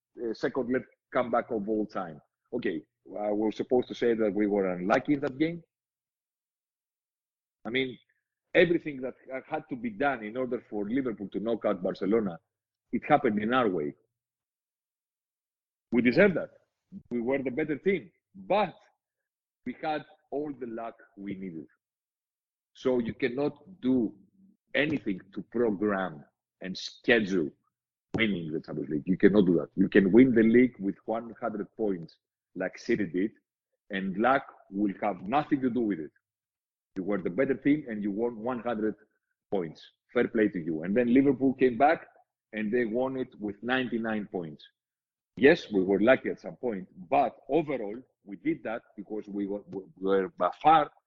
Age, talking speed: 50-69, 160 wpm